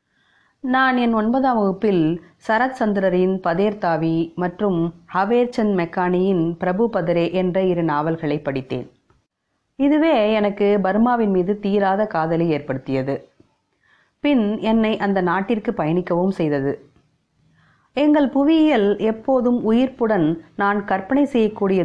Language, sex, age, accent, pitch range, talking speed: Tamil, female, 30-49, native, 170-225 Hz, 100 wpm